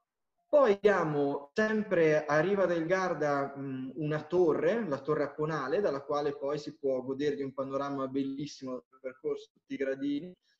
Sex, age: male, 20-39